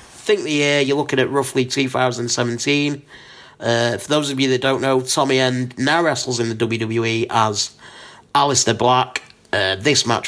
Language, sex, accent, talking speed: English, male, British, 170 wpm